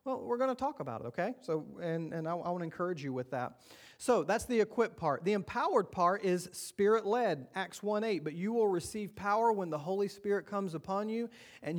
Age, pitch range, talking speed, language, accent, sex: 40-59, 165-215 Hz, 230 wpm, English, American, male